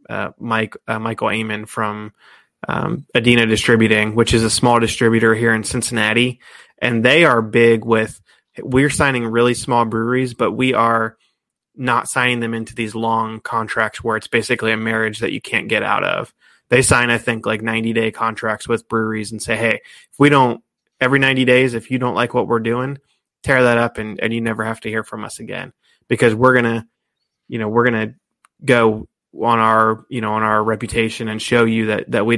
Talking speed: 205 wpm